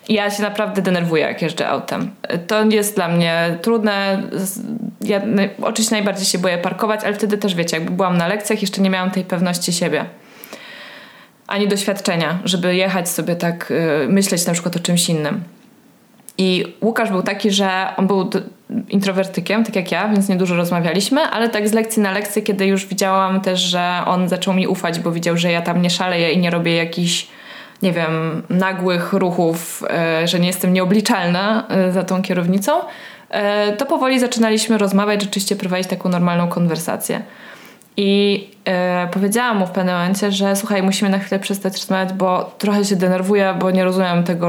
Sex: female